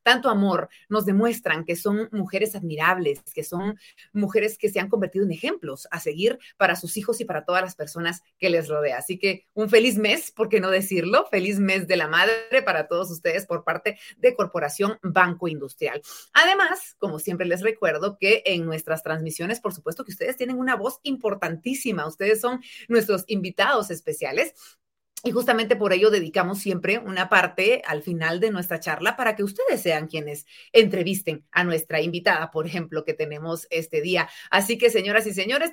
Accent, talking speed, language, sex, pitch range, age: Mexican, 180 wpm, Spanish, female, 175-230 Hz, 30-49